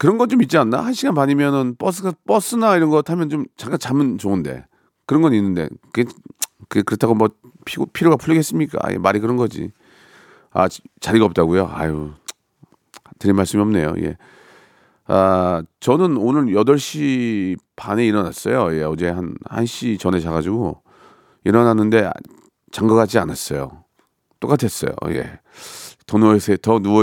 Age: 40-59